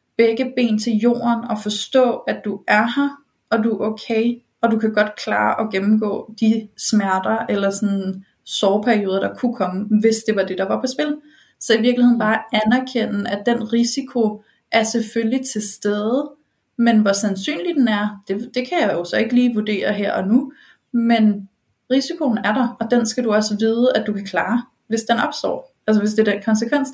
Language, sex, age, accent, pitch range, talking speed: Danish, female, 30-49, native, 210-245 Hz, 195 wpm